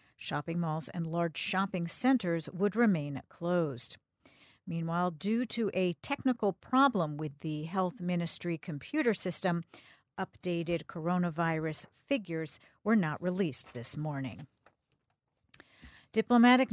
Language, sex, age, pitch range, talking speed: English, female, 50-69, 165-205 Hz, 110 wpm